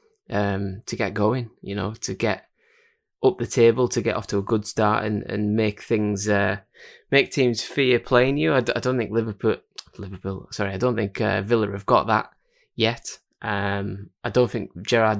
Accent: British